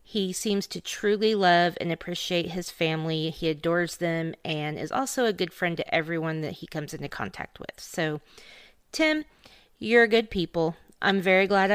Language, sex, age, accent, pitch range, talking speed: English, female, 30-49, American, 165-225 Hz, 175 wpm